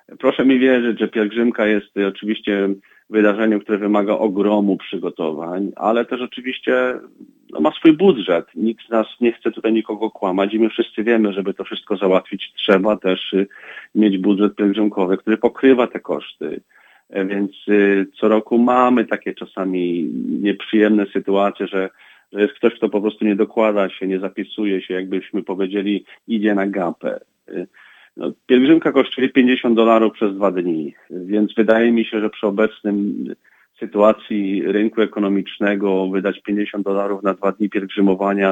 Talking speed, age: 145 wpm, 40-59